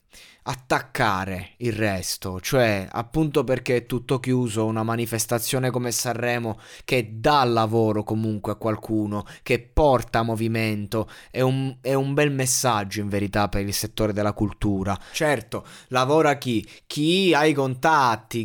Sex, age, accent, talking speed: male, 20-39, native, 135 wpm